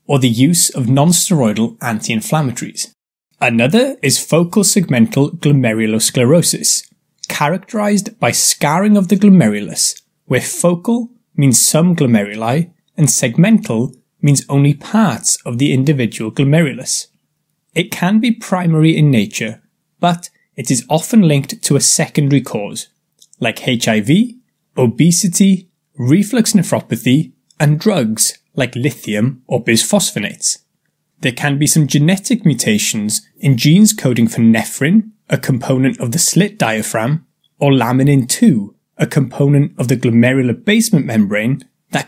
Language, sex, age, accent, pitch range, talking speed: English, male, 20-39, British, 125-180 Hz, 120 wpm